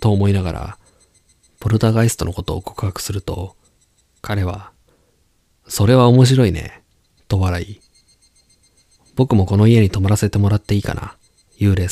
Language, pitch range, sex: Japanese, 85-110 Hz, male